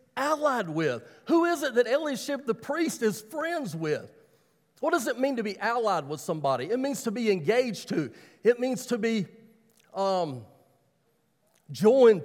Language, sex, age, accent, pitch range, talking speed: English, male, 40-59, American, 195-260 Hz, 160 wpm